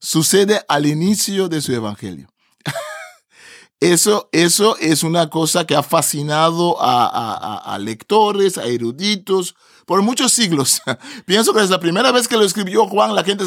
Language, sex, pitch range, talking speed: Spanish, male, 160-205 Hz, 155 wpm